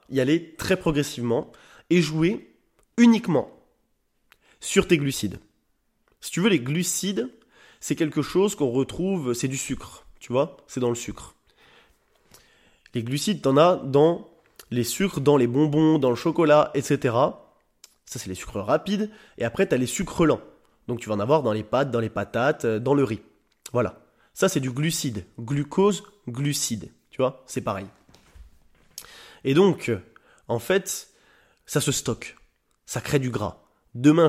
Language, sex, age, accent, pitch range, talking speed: French, male, 20-39, French, 120-165 Hz, 165 wpm